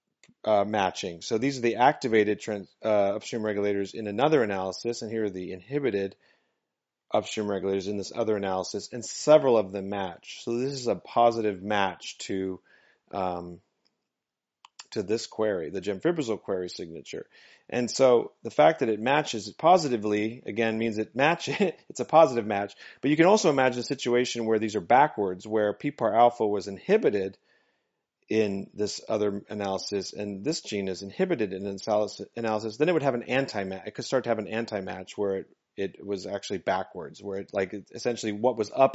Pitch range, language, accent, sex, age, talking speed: 100-120 Hz, English, American, male, 30-49, 175 wpm